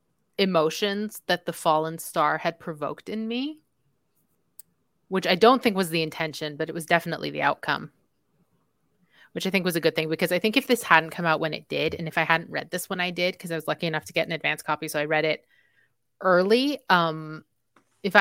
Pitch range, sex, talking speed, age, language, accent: 160-195 Hz, female, 220 wpm, 30-49, English, American